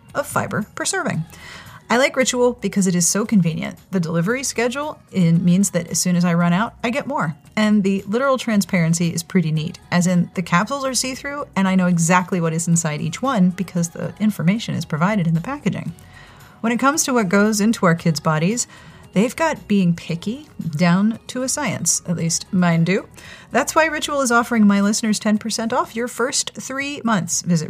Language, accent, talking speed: English, American, 200 wpm